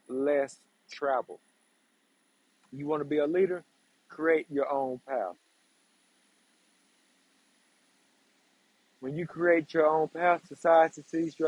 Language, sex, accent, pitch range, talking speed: English, male, American, 140-185 Hz, 110 wpm